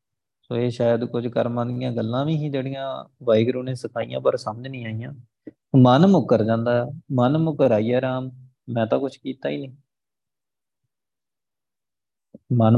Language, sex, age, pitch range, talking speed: Punjabi, male, 20-39, 120-145 Hz, 140 wpm